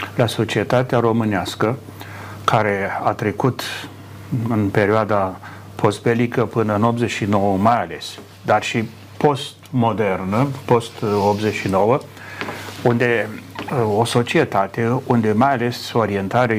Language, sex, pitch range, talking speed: Romanian, male, 105-135 Hz, 90 wpm